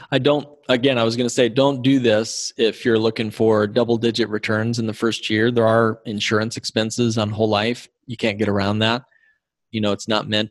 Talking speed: 225 wpm